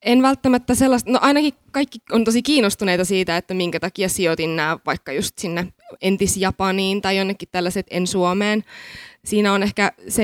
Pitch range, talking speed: 180-210 Hz, 160 wpm